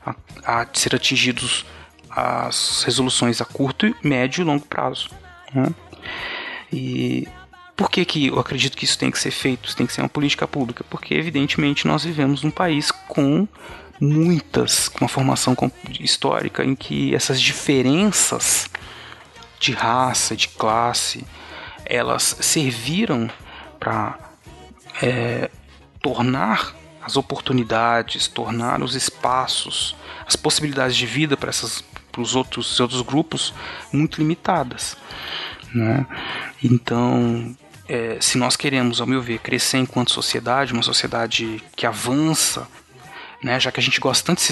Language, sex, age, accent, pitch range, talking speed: Portuguese, male, 30-49, Brazilian, 120-145 Hz, 135 wpm